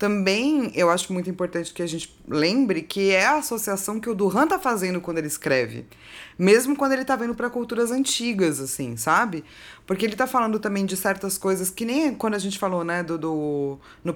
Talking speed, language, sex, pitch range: 210 wpm, Portuguese, female, 160-220 Hz